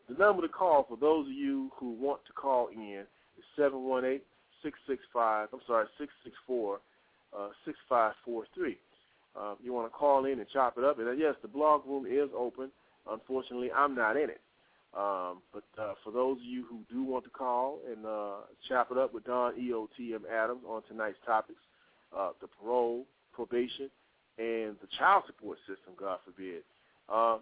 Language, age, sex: English, 30-49, male